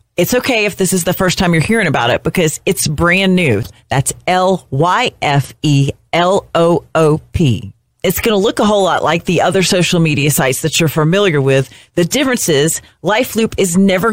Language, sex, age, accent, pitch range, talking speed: English, female, 40-59, American, 150-195 Hz, 175 wpm